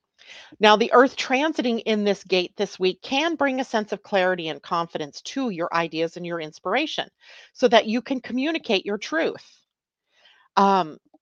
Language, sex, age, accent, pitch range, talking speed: English, female, 40-59, American, 175-240 Hz, 165 wpm